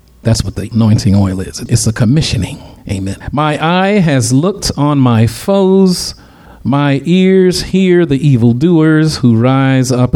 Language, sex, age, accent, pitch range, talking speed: English, male, 40-59, American, 115-150 Hz, 150 wpm